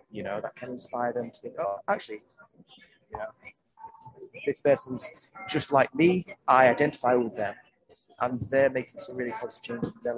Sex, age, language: male, 30-49, English